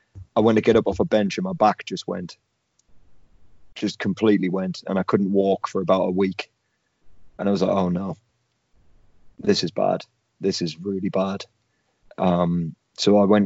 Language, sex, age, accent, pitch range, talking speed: English, male, 20-39, British, 95-110 Hz, 185 wpm